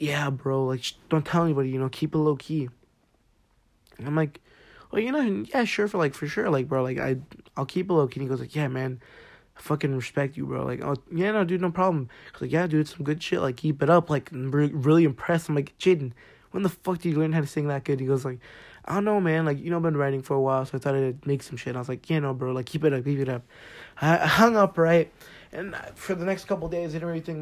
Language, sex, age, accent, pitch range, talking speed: English, male, 20-39, American, 130-160 Hz, 290 wpm